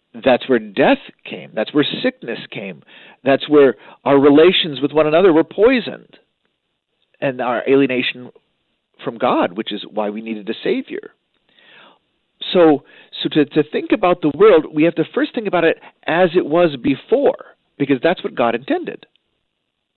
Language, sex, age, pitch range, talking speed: English, male, 50-69, 115-165 Hz, 160 wpm